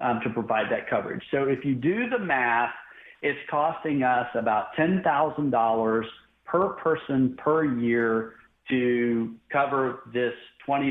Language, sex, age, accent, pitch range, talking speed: English, male, 50-69, American, 125-185 Hz, 130 wpm